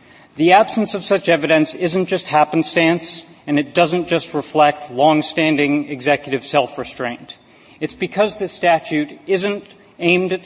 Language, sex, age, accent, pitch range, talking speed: English, male, 40-59, American, 145-175 Hz, 130 wpm